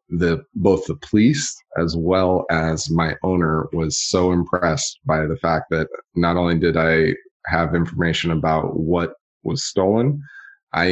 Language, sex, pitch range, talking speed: English, male, 80-90 Hz, 150 wpm